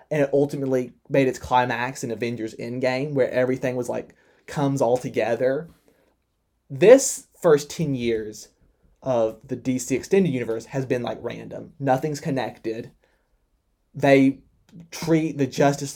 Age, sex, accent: 20-39, male, American